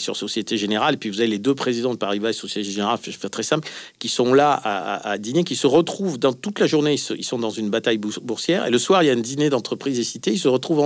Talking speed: 310 wpm